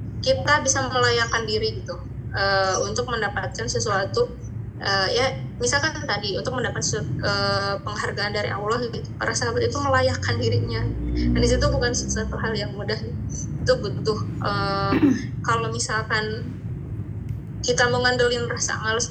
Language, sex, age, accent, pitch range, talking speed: Indonesian, female, 20-39, native, 110-130 Hz, 130 wpm